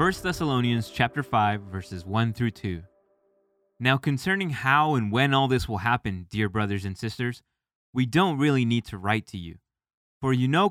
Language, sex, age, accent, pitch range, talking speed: English, male, 20-39, American, 105-135 Hz, 180 wpm